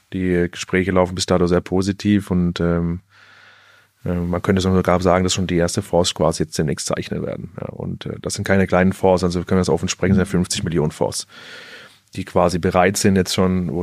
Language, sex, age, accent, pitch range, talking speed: German, male, 30-49, German, 95-105 Hz, 210 wpm